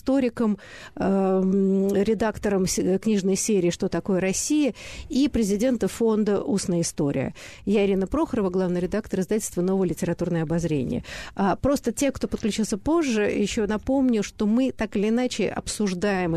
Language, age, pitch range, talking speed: Russian, 50-69, 185-240 Hz, 130 wpm